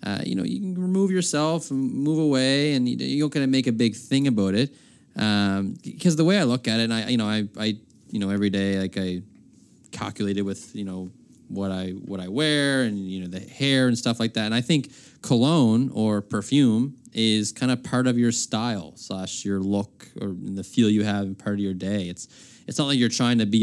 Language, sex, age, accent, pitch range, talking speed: English, male, 20-39, American, 100-125 Hz, 235 wpm